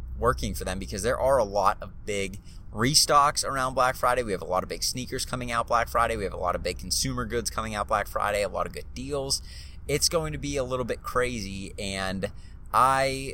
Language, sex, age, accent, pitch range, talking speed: English, male, 30-49, American, 95-125 Hz, 235 wpm